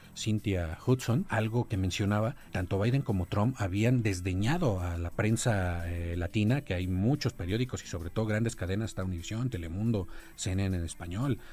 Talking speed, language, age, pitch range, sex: 155 wpm, Spanish, 40-59, 95-120 Hz, male